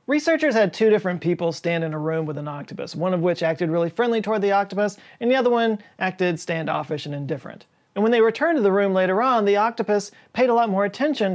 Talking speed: 240 wpm